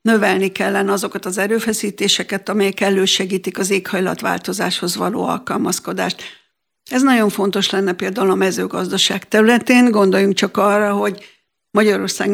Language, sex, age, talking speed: Hungarian, female, 60-79, 115 wpm